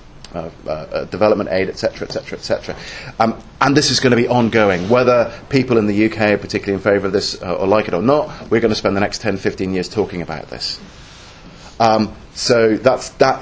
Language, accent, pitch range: English, British, 100-125 Hz